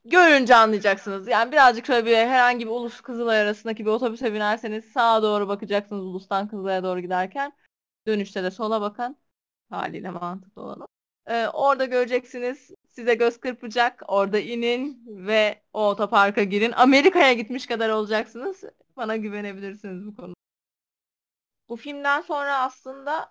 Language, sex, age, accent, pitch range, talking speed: Turkish, female, 30-49, native, 185-235 Hz, 135 wpm